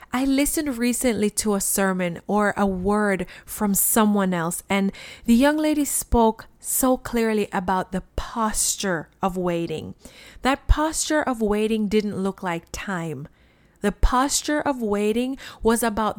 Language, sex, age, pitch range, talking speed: English, female, 30-49, 195-255 Hz, 140 wpm